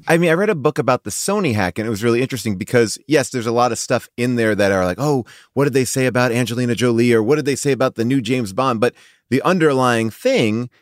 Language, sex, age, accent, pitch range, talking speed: English, male, 30-49, American, 110-135 Hz, 270 wpm